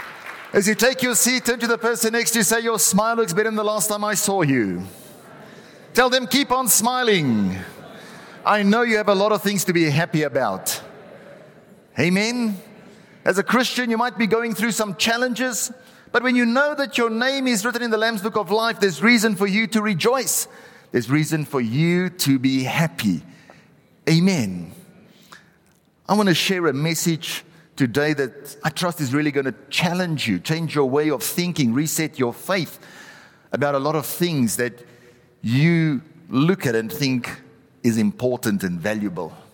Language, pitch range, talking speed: English, 135-215 Hz, 180 wpm